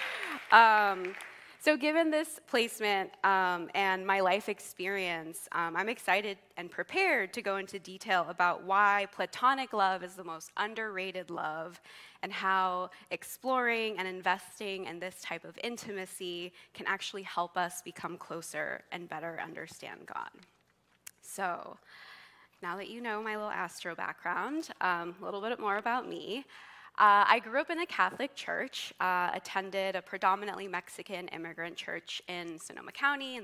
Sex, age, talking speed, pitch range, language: female, 20-39, 150 wpm, 175-215 Hz, English